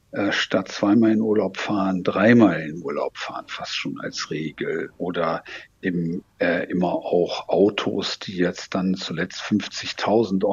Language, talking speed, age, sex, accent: German, 135 wpm, 60-79, male, German